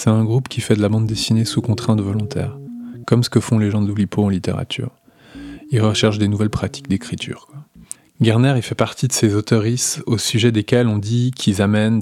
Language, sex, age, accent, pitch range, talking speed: French, male, 20-39, French, 105-125 Hz, 215 wpm